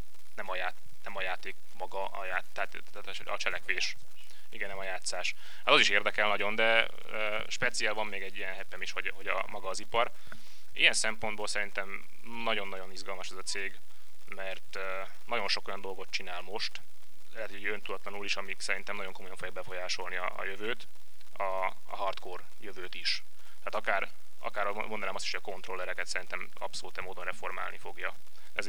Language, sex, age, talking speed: Hungarian, male, 20-39, 170 wpm